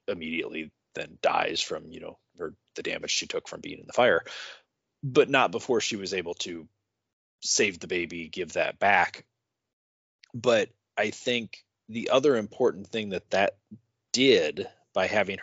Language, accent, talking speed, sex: English, American, 160 wpm, male